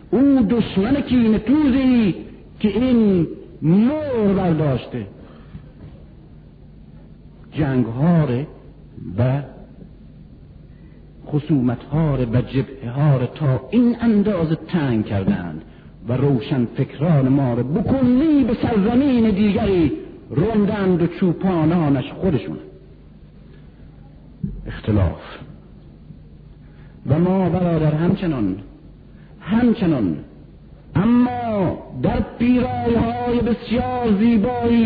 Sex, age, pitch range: male, 60-79, 150-240 Hz